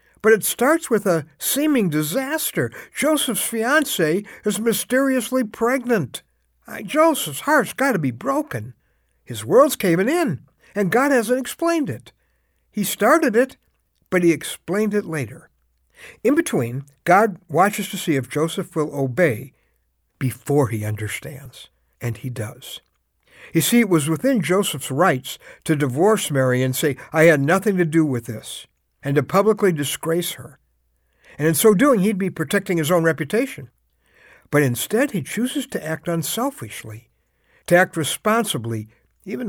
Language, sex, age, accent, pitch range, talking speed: English, male, 60-79, American, 135-230 Hz, 145 wpm